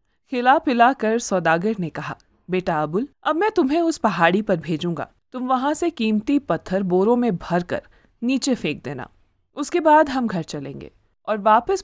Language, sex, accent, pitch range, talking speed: Hindi, female, native, 185-265 Hz, 165 wpm